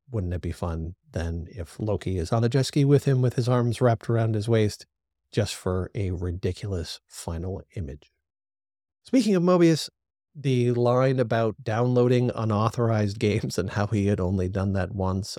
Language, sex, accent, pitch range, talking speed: English, male, American, 95-125 Hz, 170 wpm